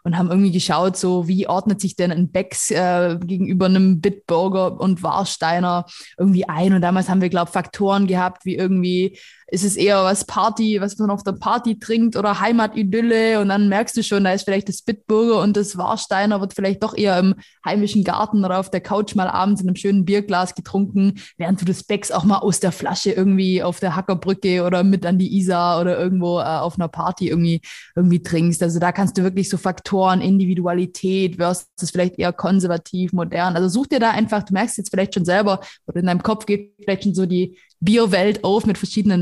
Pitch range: 180-205 Hz